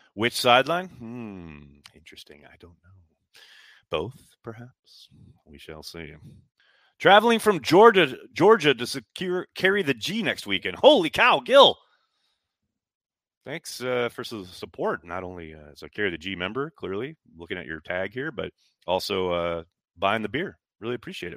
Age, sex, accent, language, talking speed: 30-49, male, American, English, 155 wpm